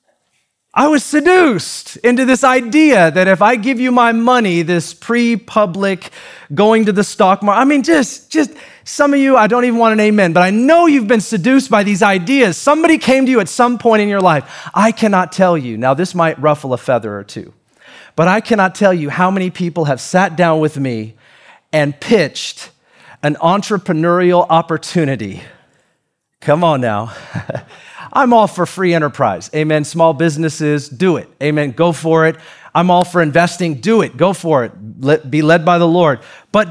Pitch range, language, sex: 155-215 Hz, English, male